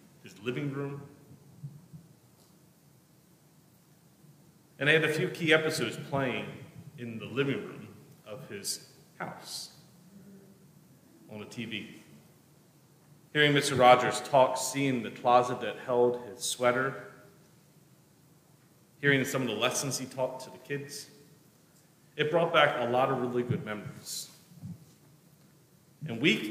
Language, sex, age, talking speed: English, male, 40-59, 120 wpm